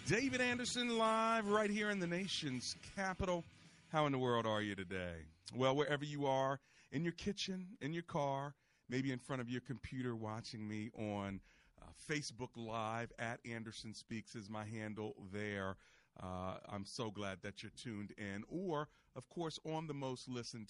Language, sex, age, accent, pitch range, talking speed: English, male, 40-59, American, 105-140 Hz, 175 wpm